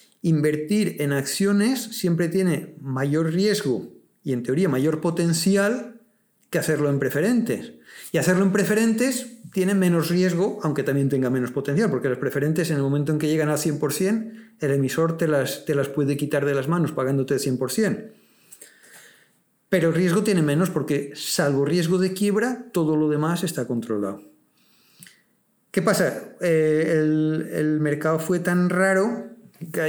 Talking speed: 155 wpm